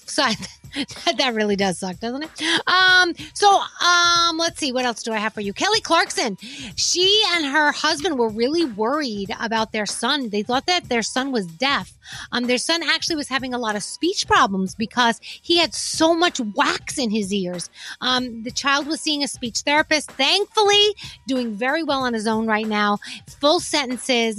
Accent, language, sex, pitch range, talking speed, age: American, English, female, 220-320 Hz, 190 wpm, 30-49